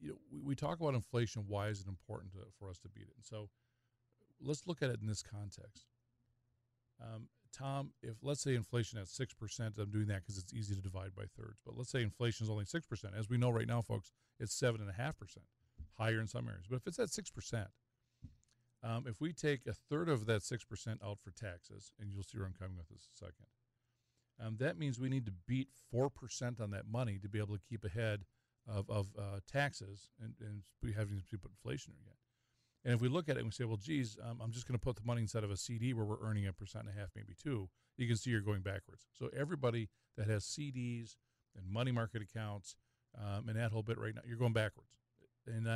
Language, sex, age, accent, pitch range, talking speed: English, male, 40-59, American, 105-125 Hz, 225 wpm